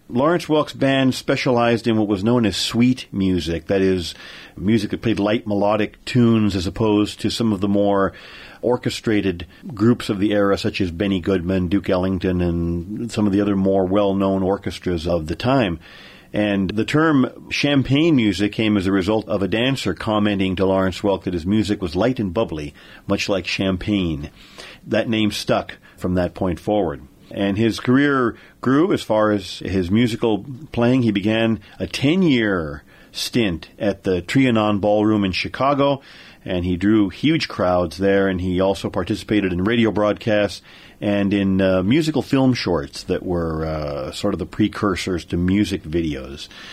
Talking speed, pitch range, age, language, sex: 170 wpm, 95-110 Hz, 40-59, English, male